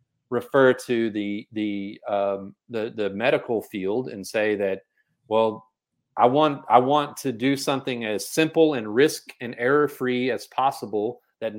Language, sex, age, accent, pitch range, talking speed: English, male, 30-49, American, 115-140 Hz, 155 wpm